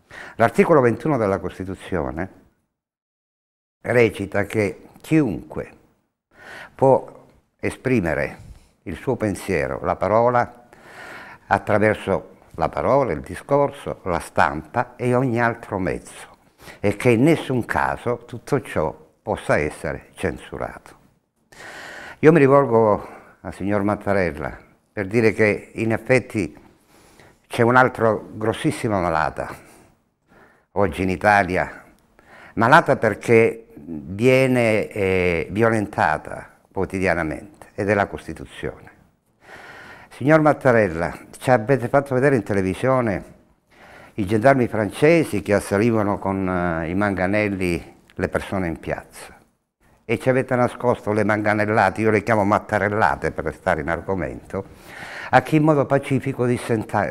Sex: male